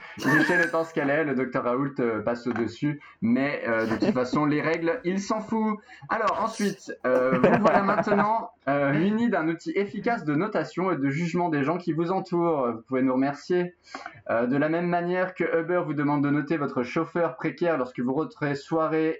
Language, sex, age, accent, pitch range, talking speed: French, male, 20-39, French, 125-175 Hz, 205 wpm